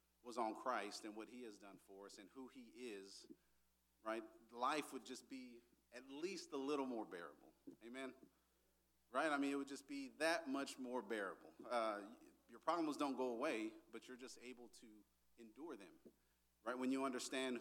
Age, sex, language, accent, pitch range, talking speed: 40-59, male, English, American, 110-135 Hz, 185 wpm